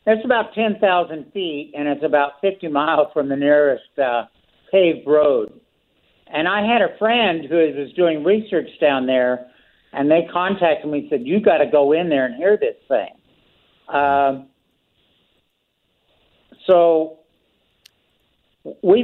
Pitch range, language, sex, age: 150-195 Hz, English, male, 60-79